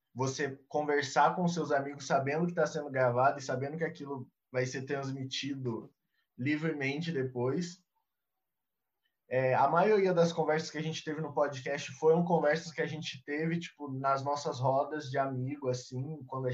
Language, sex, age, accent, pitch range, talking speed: Portuguese, male, 20-39, Brazilian, 135-160 Hz, 165 wpm